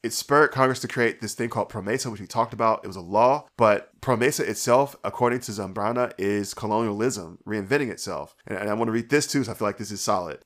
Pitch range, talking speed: 105-125 Hz, 235 wpm